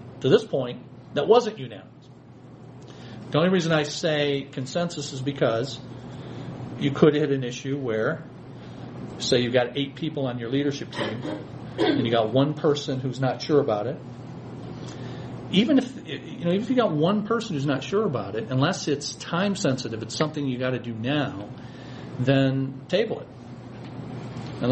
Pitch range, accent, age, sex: 125-150 Hz, American, 40-59, male